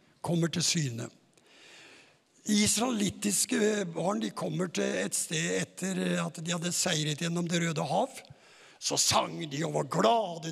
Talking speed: 145 wpm